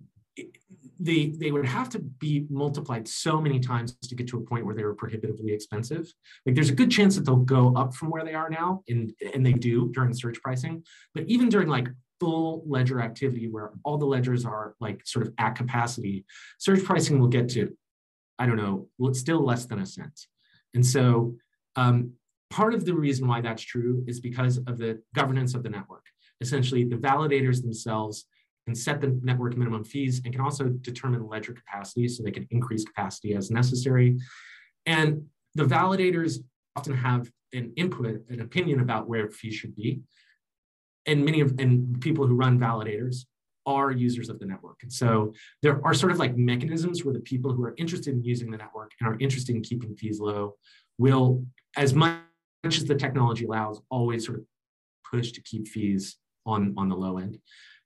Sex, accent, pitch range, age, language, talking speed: male, American, 115-140 Hz, 30-49, English, 190 wpm